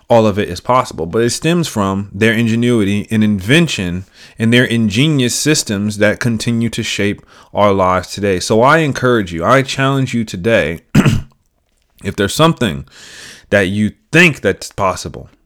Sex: male